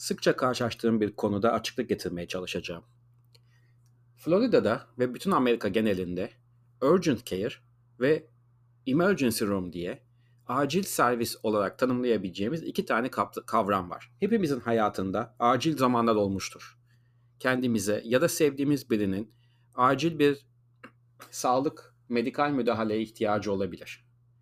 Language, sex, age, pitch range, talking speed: Turkish, male, 40-59, 115-135 Hz, 105 wpm